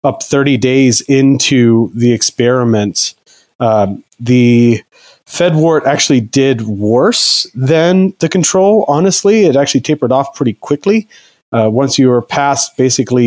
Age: 30-49